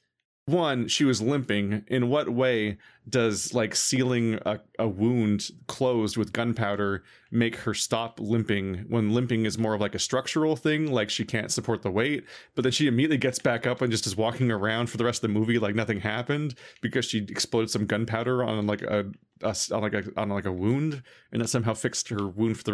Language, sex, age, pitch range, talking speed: English, male, 30-49, 105-130 Hz, 205 wpm